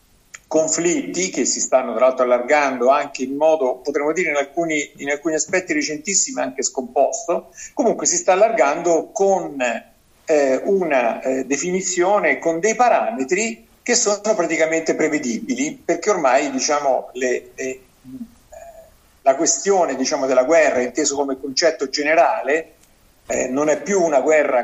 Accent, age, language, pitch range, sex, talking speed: native, 50-69, Italian, 130-195 Hz, male, 135 wpm